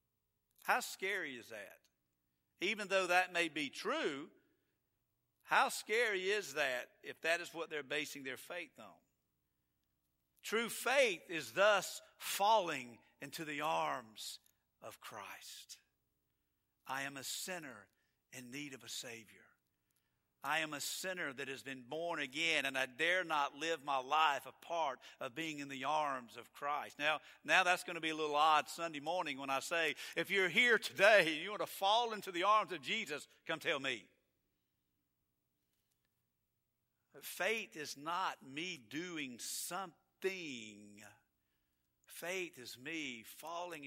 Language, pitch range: English, 100-170 Hz